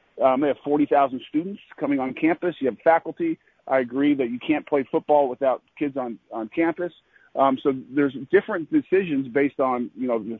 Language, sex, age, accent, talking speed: English, male, 40-59, American, 195 wpm